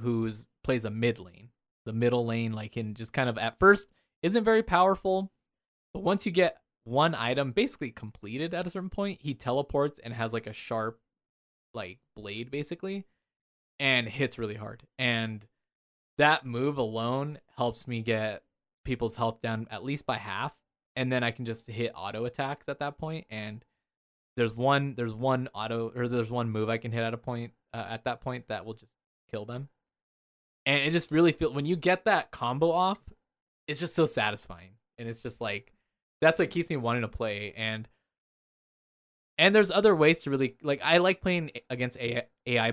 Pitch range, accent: 115-145 Hz, American